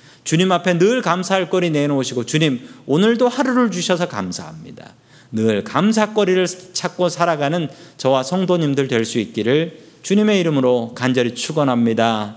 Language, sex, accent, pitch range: Korean, male, native, 130-180 Hz